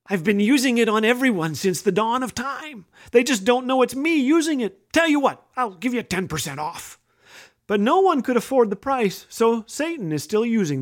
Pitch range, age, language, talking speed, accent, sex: 170-235 Hz, 40-59, English, 215 wpm, American, male